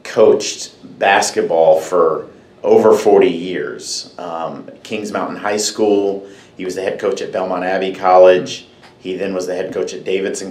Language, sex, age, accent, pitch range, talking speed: English, male, 50-69, American, 95-125 Hz, 160 wpm